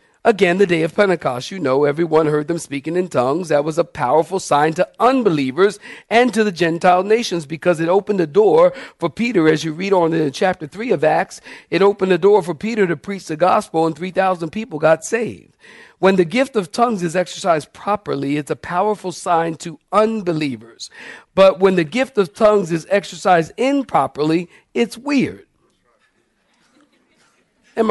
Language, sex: English, male